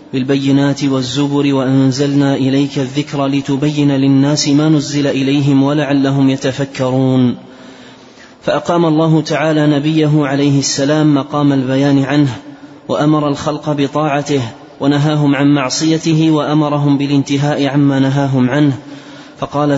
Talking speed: 100 wpm